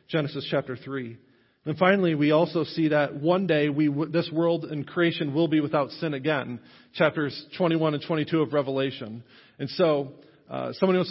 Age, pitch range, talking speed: 40-59, 135-160 Hz, 175 wpm